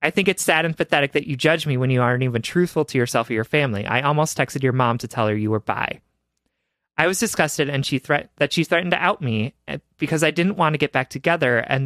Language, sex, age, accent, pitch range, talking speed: English, male, 20-39, American, 125-165 Hz, 265 wpm